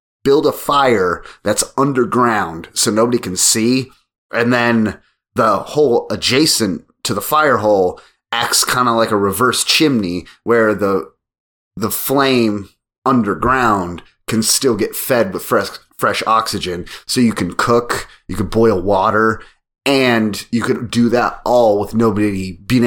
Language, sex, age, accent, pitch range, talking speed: English, male, 30-49, American, 100-115 Hz, 145 wpm